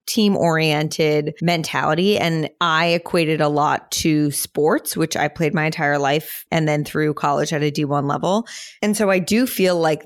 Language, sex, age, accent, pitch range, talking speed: English, female, 20-39, American, 155-190 Hz, 175 wpm